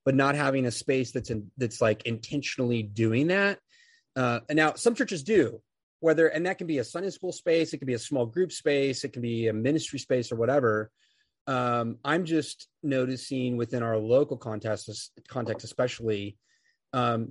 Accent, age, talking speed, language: American, 30-49, 185 wpm, English